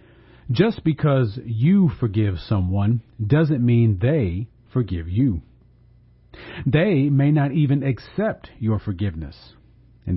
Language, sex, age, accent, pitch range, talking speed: English, male, 40-59, American, 110-135 Hz, 105 wpm